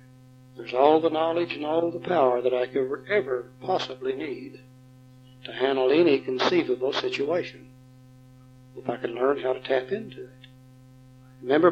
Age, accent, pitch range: 60-79, American, 130-160 Hz